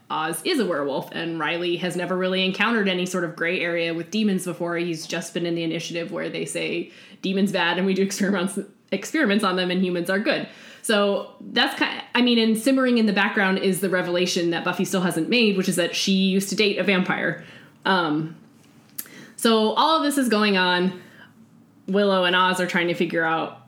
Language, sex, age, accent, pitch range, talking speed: English, female, 20-39, American, 180-220 Hz, 210 wpm